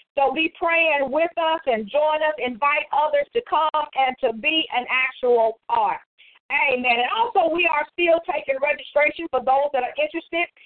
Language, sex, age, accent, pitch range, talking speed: English, female, 50-69, American, 255-320 Hz, 175 wpm